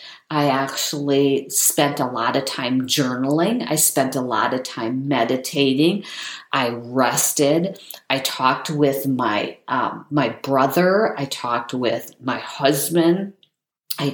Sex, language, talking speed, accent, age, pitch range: female, English, 125 wpm, American, 50-69, 140-180 Hz